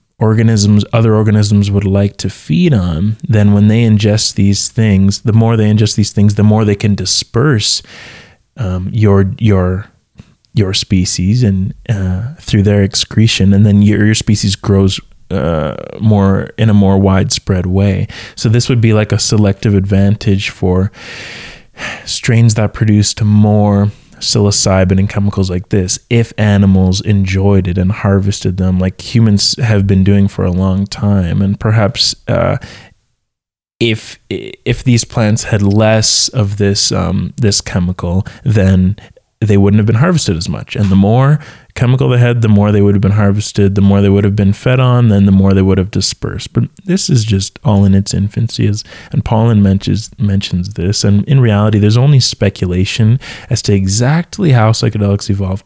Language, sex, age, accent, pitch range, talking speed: English, male, 20-39, American, 95-115 Hz, 170 wpm